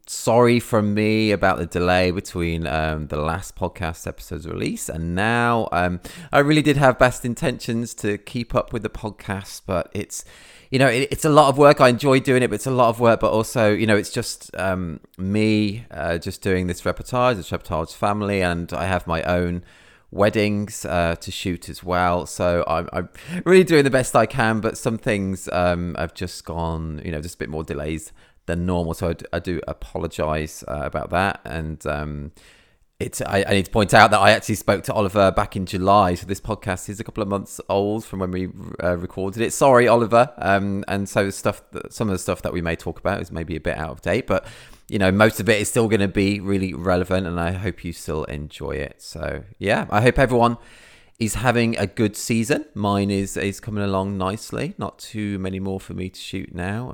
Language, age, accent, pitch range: English, 30-49, British, 90-110 Hz